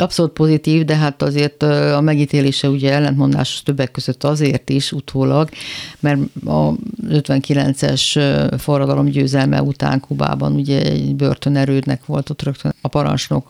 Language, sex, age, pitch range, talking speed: Hungarian, female, 50-69, 130-155 Hz, 130 wpm